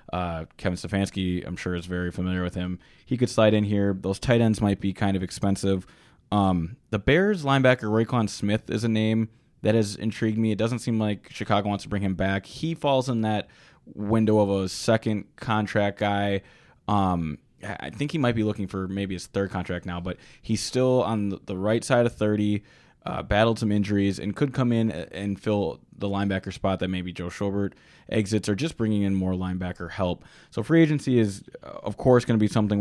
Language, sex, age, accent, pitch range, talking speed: English, male, 20-39, American, 95-120 Hz, 205 wpm